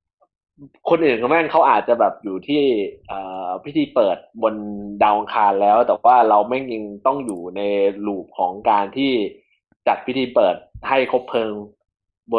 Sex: male